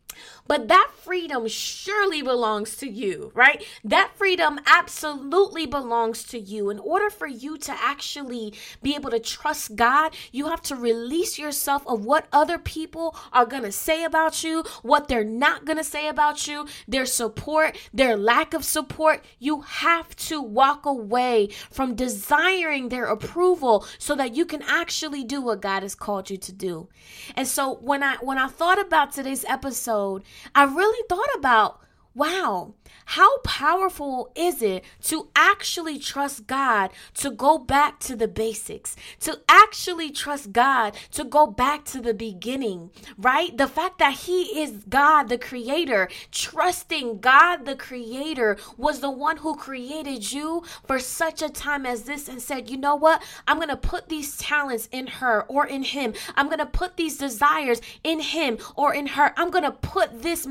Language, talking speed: English, 165 wpm